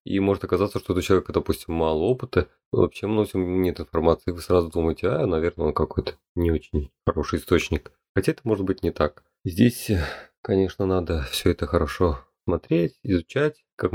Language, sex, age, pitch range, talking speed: Russian, male, 30-49, 85-100 Hz, 170 wpm